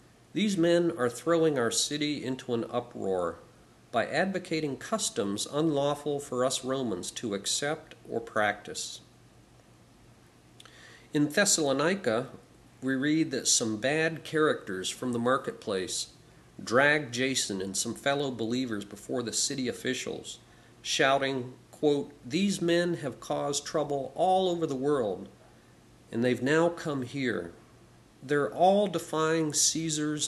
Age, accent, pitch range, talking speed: 50-69, American, 115-150 Hz, 120 wpm